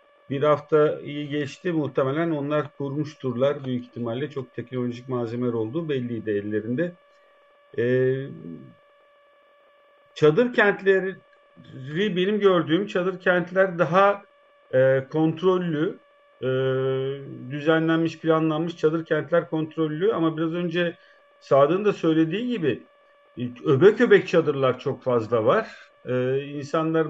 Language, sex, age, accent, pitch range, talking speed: Turkish, male, 50-69, native, 135-195 Hz, 100 wpm